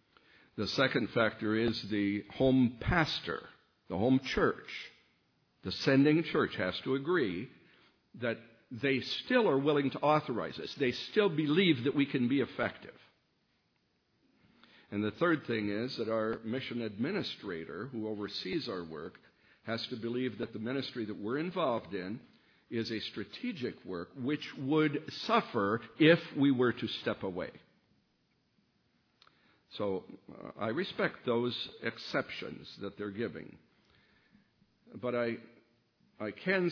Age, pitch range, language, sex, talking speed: 60-79, 110-140 Hz, English, male, 130 wpm